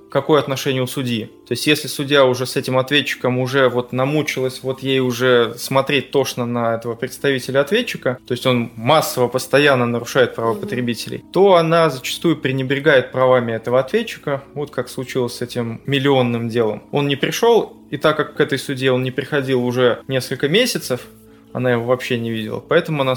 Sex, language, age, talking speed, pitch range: male, Russian, 20-39, 175 wpm, 130-160 Hz